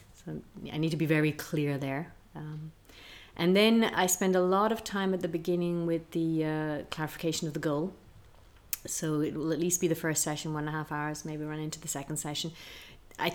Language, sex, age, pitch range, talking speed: English, female, 30-49, 150-170 Hz, 215 wpm